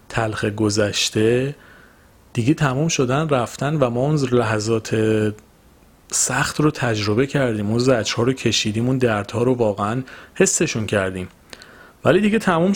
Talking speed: 125 wpm